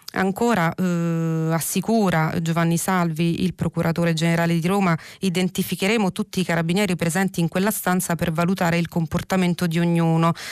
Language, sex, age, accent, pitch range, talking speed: Italian, female, 30-49, native, 170-190 Hz, 135 wpm